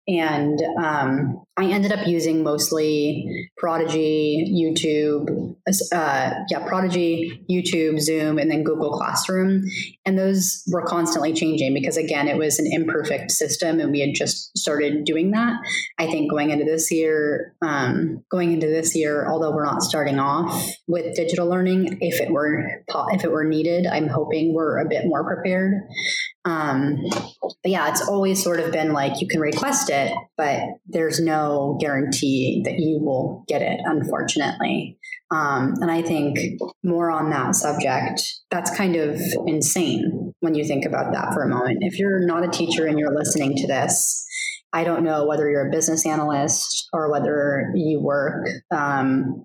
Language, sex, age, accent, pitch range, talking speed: English, female, 30-49, American, 150-175 Hz, 165 wpm